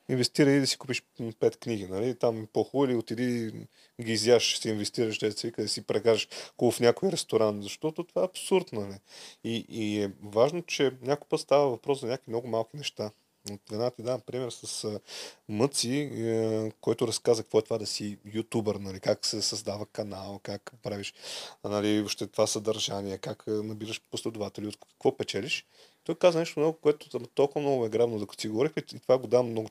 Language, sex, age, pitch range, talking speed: Bulgarian, male, 30-49, 105-135 Hz, 190 wpm